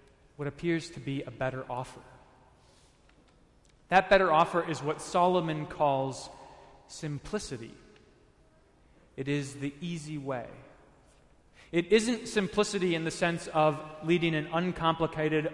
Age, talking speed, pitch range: 30-49, 115 wpm, 145-180 Hz